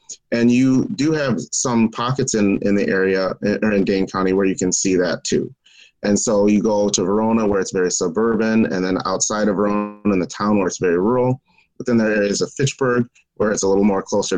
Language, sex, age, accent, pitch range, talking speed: English, male, 30-49, American, 95-115 Hz, 225 wpm